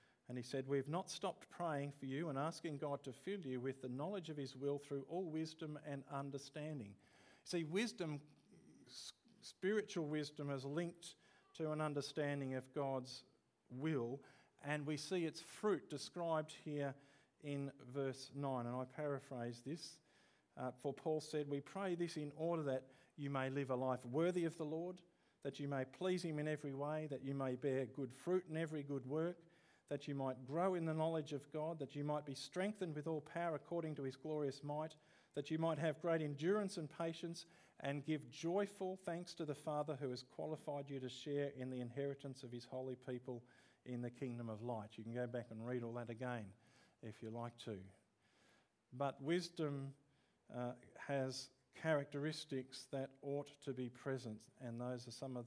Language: English